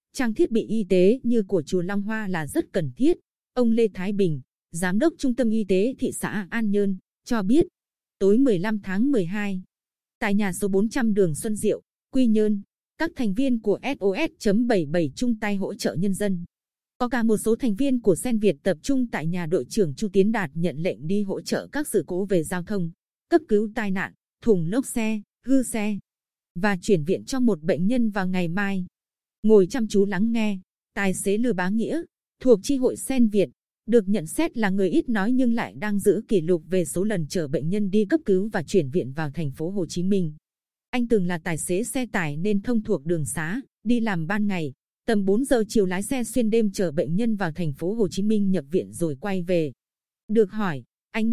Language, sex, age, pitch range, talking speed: Vietnamese, female, 20-39, 185-230 Hz, 220 wpm